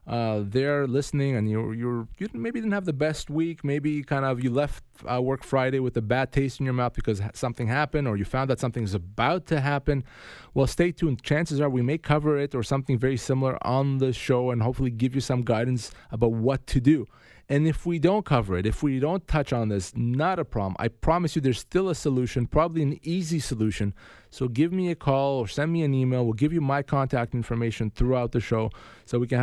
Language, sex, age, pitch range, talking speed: English, male, 20-39, 110-145 Hz, 230 wpm